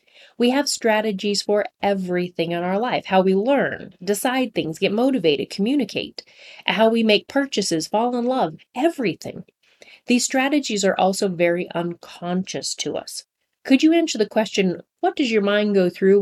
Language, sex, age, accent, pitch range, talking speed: English, female, 30-49, American, 175-225 Hz, 160 wpm